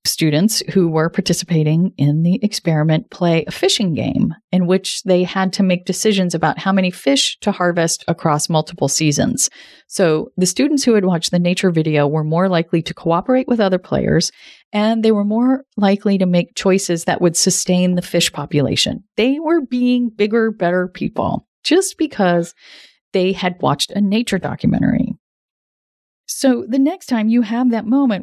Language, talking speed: English, 170 wpm